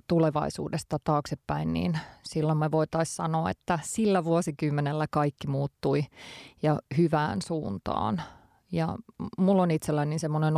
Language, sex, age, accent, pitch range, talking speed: Finnish, female, 30-49, native, 150-170 Hz, 110 wpm